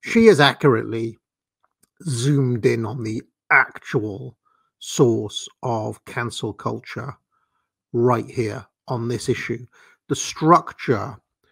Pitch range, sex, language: 115-140 Hz, male, English